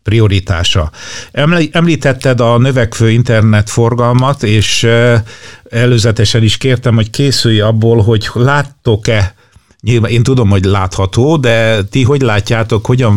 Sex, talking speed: male, 105 wpm